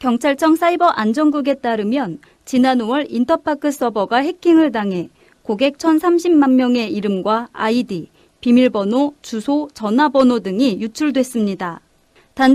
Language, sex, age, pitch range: Korean, female, 30-49, 225-290 Hz